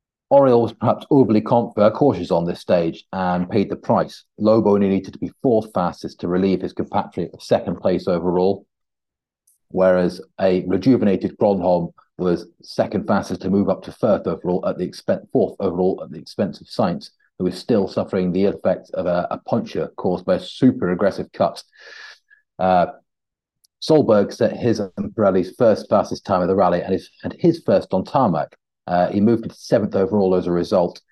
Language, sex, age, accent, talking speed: English, male, 40-59, British, 180 wpm